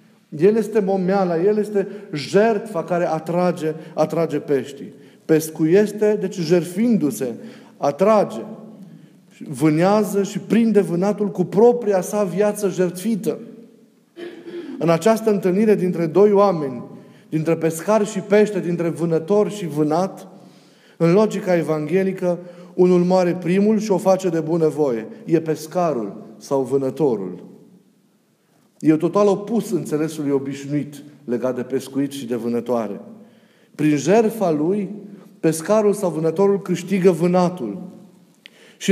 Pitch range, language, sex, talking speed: 165-210 Hz, Romanian, male, 115 wpm